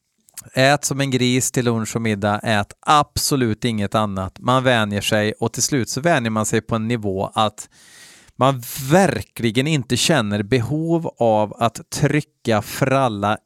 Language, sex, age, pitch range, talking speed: Swedish, male, 30-49, 105-130 Hz, 160 wpm